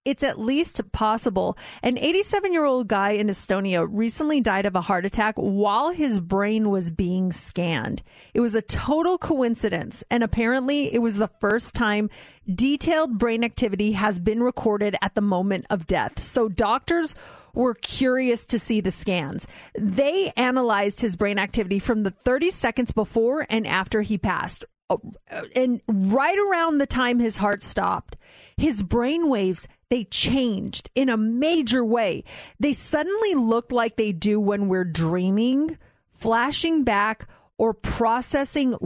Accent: American